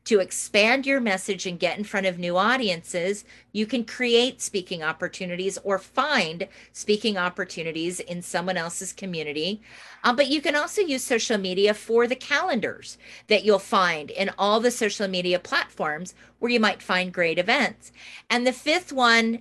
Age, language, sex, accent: 40-59, English, female, American